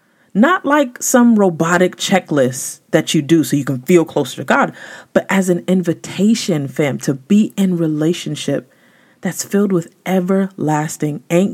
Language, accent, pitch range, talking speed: English, American, 160-210 Hz, 150 wpm